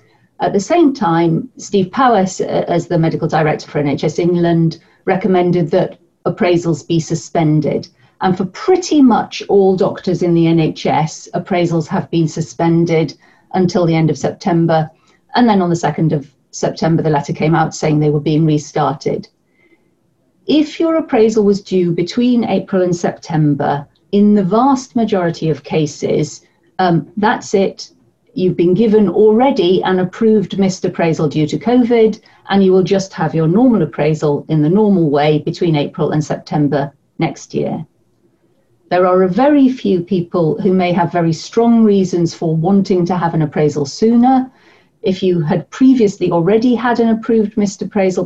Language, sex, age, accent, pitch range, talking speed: English, female, 40-59, British, 165-210 Hz, 160 wpm